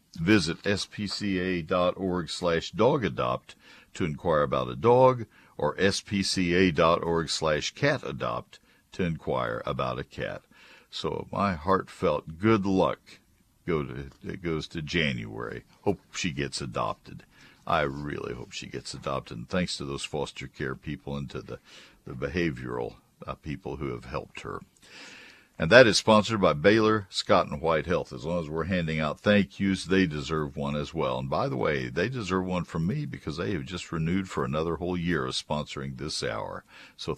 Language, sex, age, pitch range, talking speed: English, male, 60-79, 70-95 Hz, 160 wpm